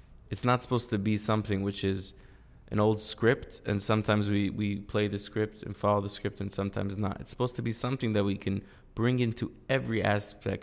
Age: 20-39